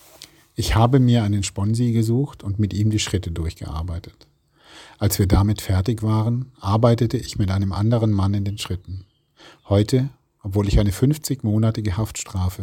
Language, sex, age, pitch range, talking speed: English, male, 40-59, 90-110 Hz, 150 wpm